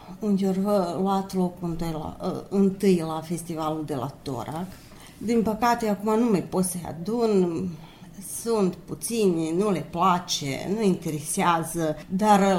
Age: 30-49